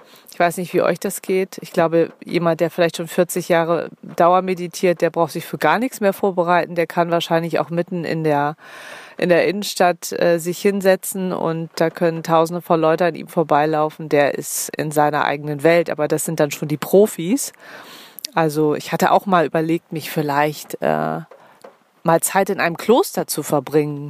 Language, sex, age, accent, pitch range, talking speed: German, female, 30-49, German, 160-190 Hz, 185 wpm